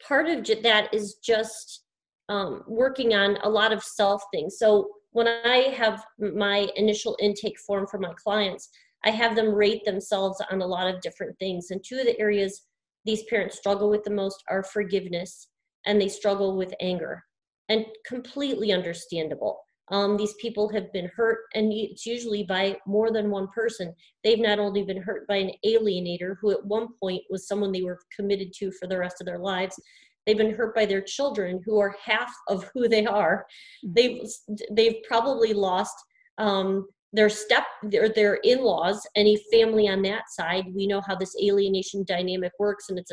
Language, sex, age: English, female, 30-49